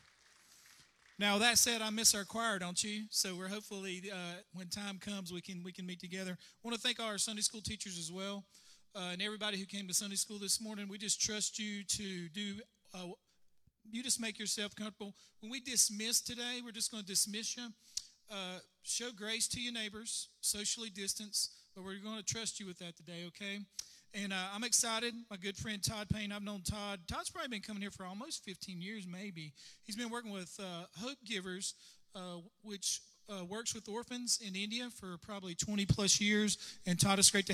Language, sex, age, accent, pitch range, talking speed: English, male, 40-59, American, 185-215 Hz, 205 wpm